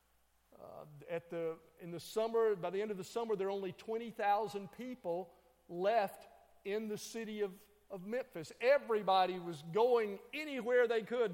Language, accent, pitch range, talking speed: English, American, 180-225 Hz, 160 wpm